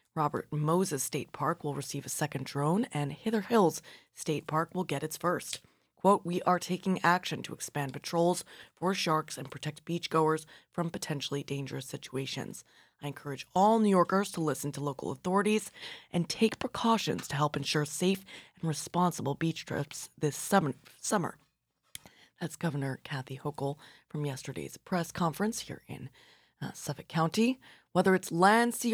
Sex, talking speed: female, 155 wpm